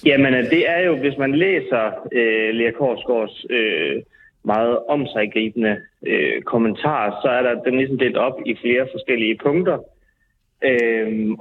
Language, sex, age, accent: Danish, male, 30-49, native